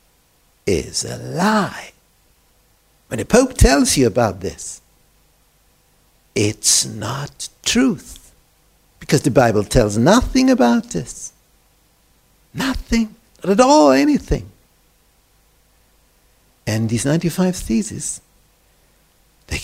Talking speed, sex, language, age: 90 wpm, male, Romanian, 60-79